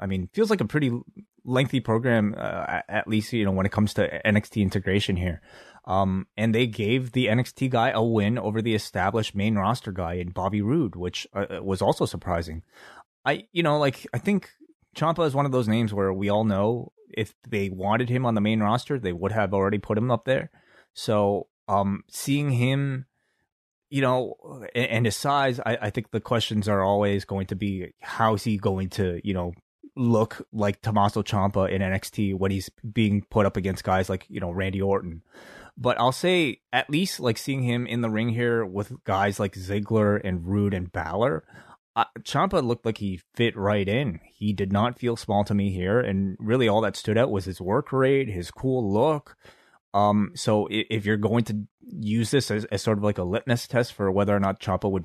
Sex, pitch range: male, 100-120 Hz